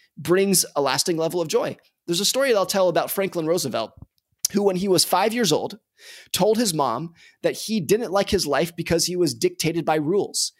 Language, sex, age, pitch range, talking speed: English, male, 30-49, 160-210 Hz, 210 wpm